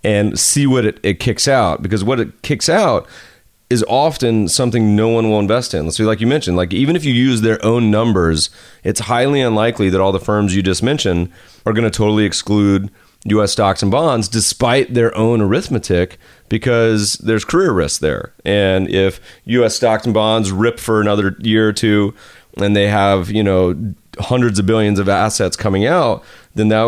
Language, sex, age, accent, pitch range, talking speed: English, male, 30-49, American, 95-115 Hz, 195 wpm